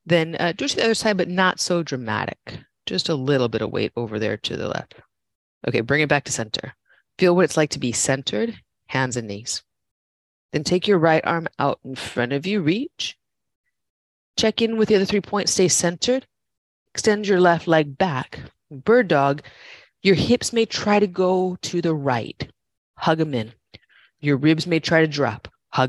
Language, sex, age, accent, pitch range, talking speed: English, female, 30-49, American, 130-195 Hz, 195 wpm